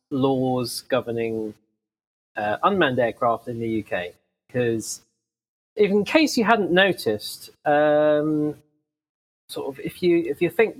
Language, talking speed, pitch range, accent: English, 130 wpm, 120-160 Hz, British